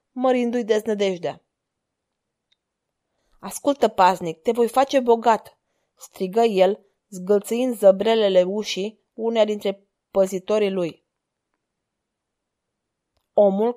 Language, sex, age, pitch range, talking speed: Romanian, female, 20-39, 200-250 Hz, 75 wpm